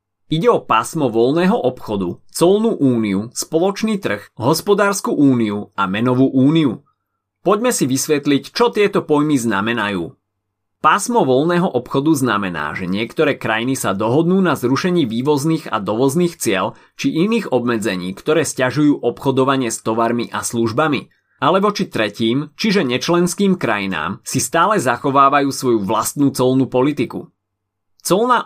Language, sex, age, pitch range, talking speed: Slovak, male, 30-49, 115-165 Hz, 125 wpm